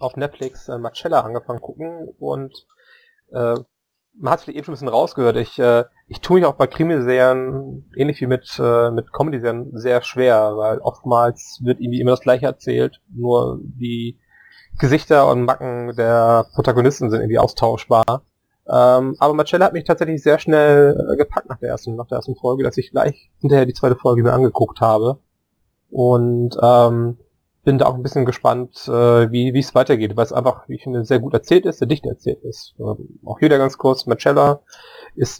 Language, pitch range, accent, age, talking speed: German, 115-140 Hz, German, 30-49, 185 wpm